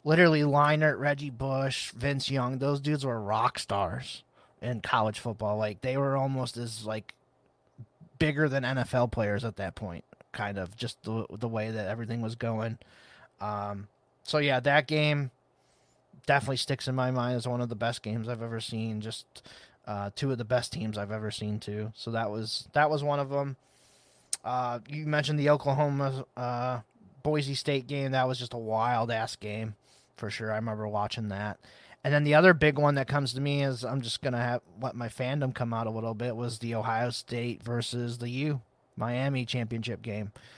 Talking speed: 195 wpm